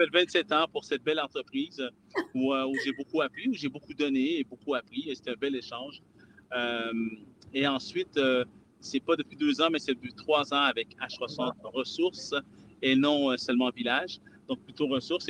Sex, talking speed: male, 180 wpm